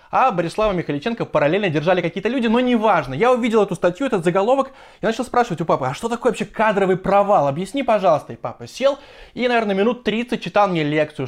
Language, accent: Russian, native